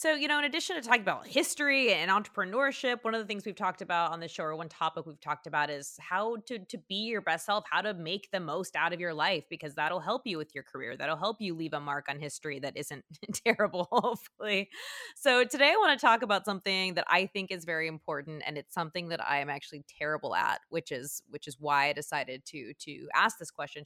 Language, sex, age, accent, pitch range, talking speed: English, female, 20-39, American, 160-225 Hz, 245 wpm